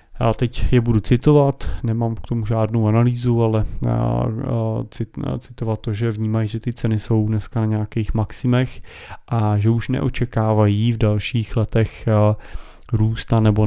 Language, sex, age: Czech, male, 30-49